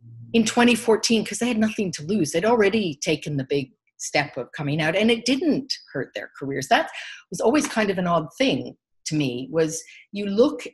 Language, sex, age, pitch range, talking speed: English, female, 50-69, 175-255 Hz, 200 wpm